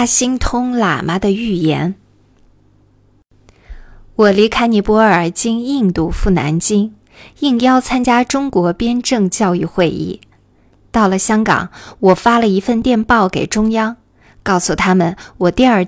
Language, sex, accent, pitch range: Chinese, female, native, 175-240 Hz